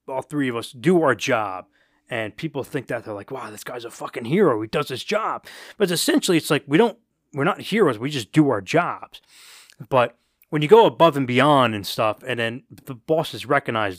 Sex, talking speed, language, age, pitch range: male, 220 wpm, English, 20-39, 115-150 Hz